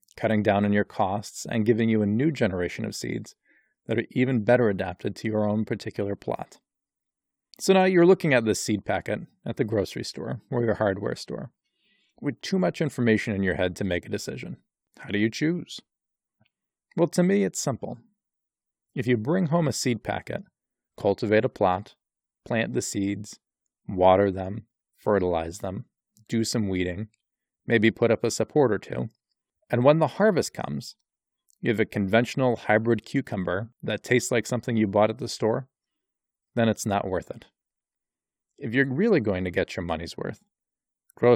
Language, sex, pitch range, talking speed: English, male, 100-125 Hz, 175 wpm